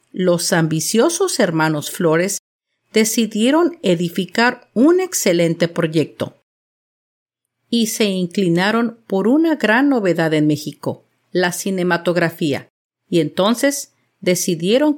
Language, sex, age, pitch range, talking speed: Spanish, female, 50-69, 165-235 Hz, 90 wpm